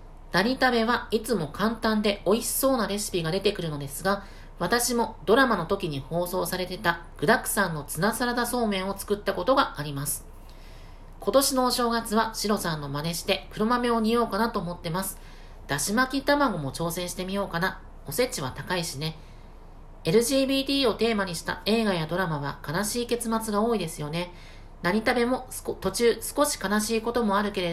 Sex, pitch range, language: female, 165-230 Hz, Japanese